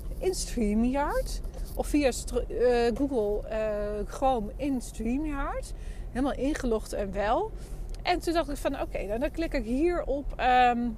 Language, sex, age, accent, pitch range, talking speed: Dutch, female, 30-49, Dutch, 235-310 Hz, 160 wpm